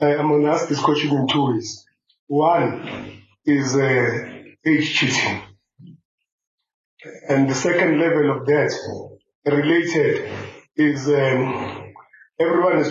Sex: male